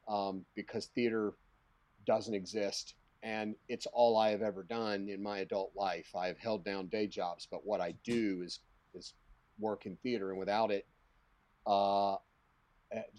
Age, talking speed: 40-59, 155 wpm